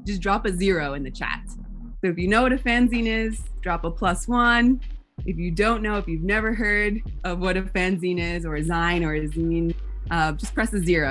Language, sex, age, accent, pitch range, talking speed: English, female, 20-39, American, 165-200 Hz, 230 wpm